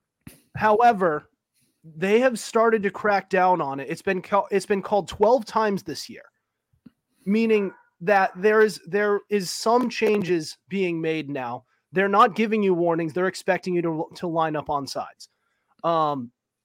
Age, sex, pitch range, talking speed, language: 30-49, male, 160-215 Hz, 160 wpm, English